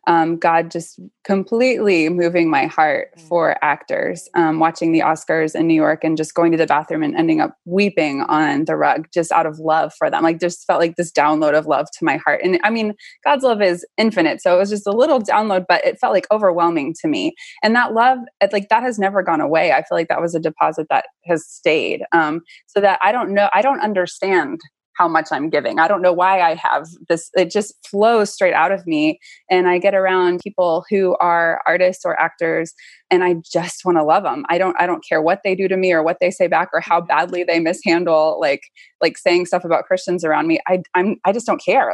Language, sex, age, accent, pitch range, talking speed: English, female, 20-39, American, 165-200 Hz, 235 wpm